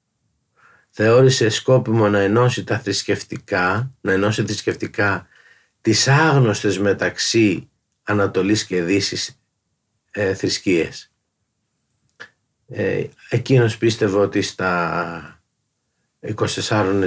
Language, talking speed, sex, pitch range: Greek, 80 wpm, male, 100-125 Hz